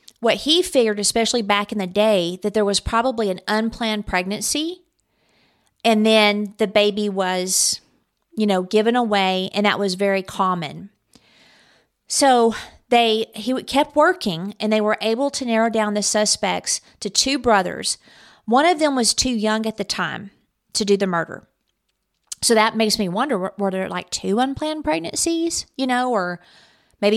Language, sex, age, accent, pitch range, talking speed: English, female, 40-59, American, 195-230 Hz, 165 wpm